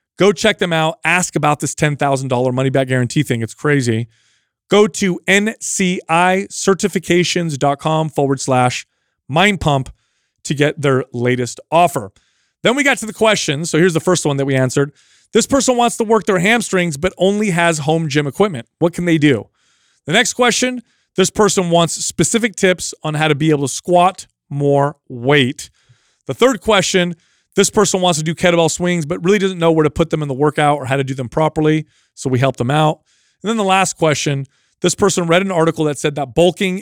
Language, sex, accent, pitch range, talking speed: English, male, American, 140-190 Hz, 195 wpm